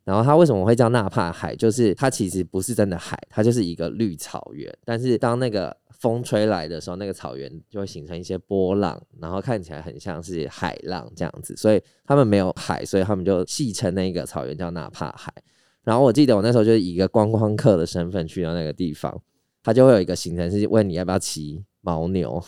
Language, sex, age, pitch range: Chinese, male, 20-39, 90-115 Hz